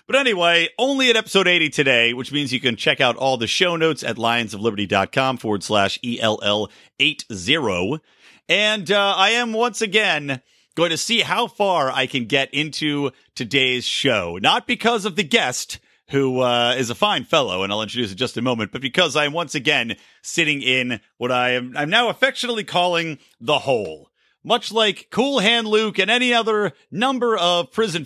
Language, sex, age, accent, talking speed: English, male, 40-59, American, 190 wpm